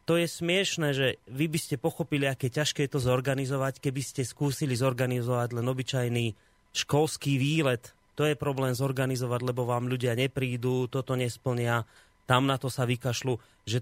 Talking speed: 160 wpm